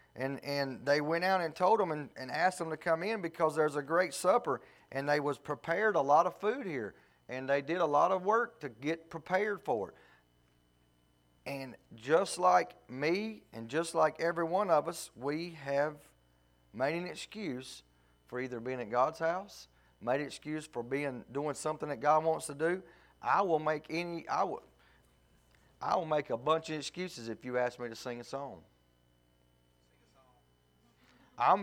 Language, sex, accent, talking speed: English, male, American, 185 wpm